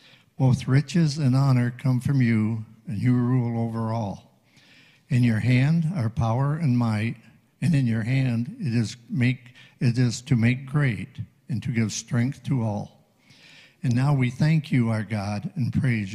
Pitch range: 115-140 Hz